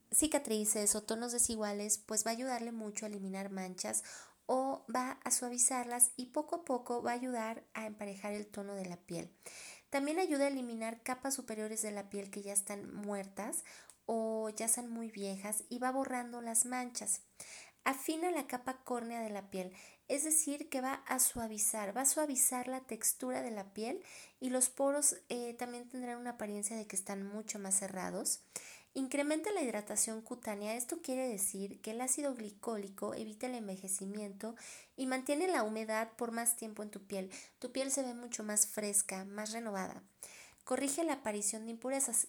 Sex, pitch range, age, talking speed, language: female, 210-255 Hz, 30-49, 180 wpm, Spanish